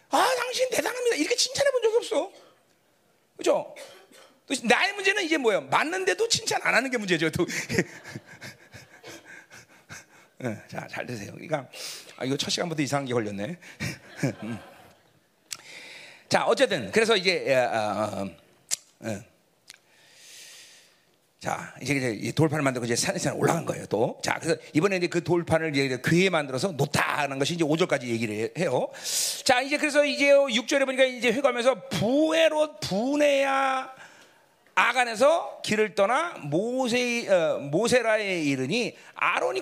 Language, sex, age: Korean, male, 40-59